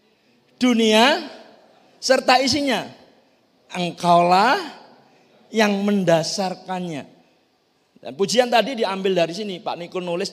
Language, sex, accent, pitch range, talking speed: Indonesian, male, native, 140-210 Hz, 85 wpm